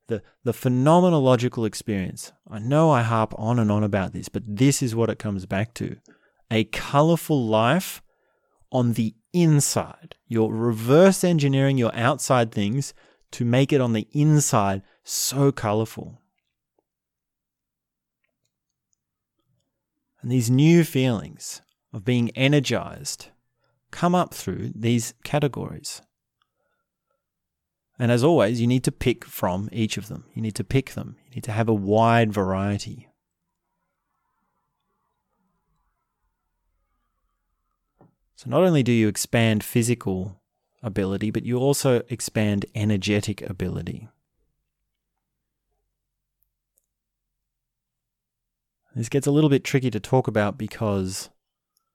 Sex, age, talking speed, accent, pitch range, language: male, 30-49, 115 wpm, Australian, 110-135 Hz, English